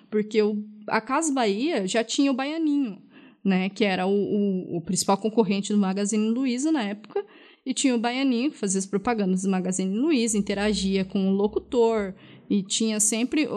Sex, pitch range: female, 205-275 Hz